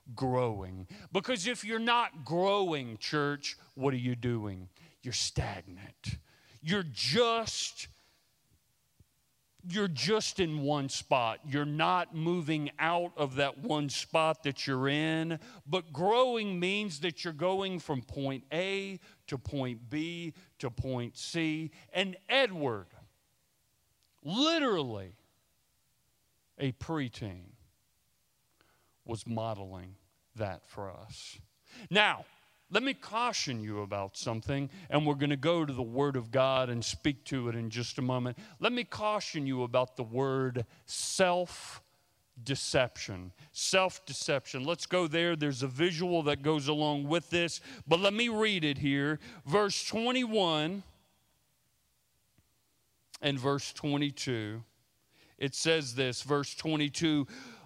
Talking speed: 125 wpm